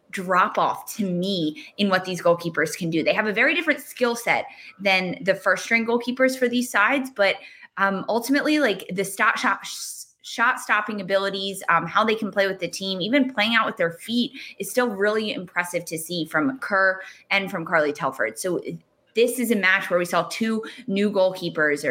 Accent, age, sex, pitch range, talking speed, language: American, 20-39, female, 170-205 Hz, 195 wpm, English